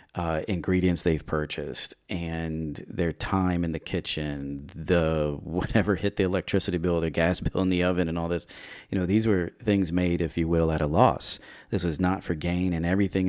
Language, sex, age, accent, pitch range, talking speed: English, male, 30-49, American, 80-95 Hz, 195 wpm